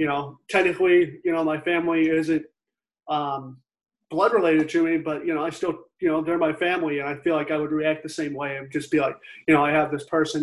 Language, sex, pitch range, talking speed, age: English, male, 155-195 Hz, 245 wpm, 30-49